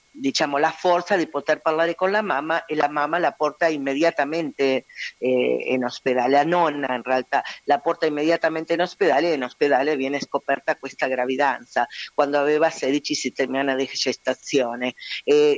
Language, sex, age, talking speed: Italian, female, 50-69, 160 wpm